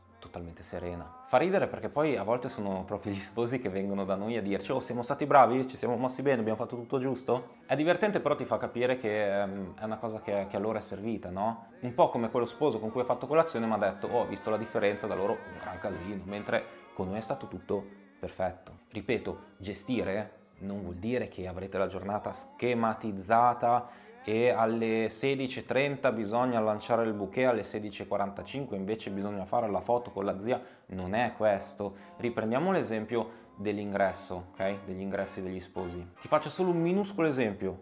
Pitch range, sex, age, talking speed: 95-120 Hz, male, 20-39, 190 wpm